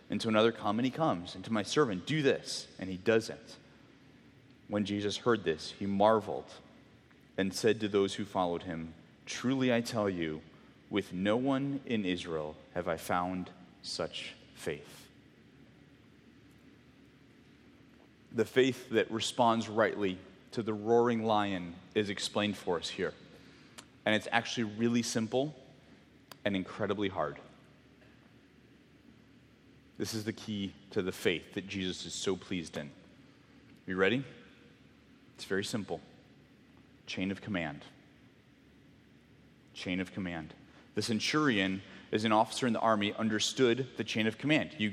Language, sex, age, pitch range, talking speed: English, male, 30-49, 95-120 Hz, 140 wpm